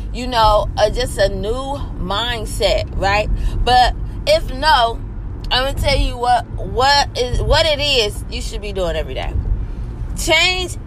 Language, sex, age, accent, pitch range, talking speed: English, female, 20-39, American, 270-330 Hz, 155 wpm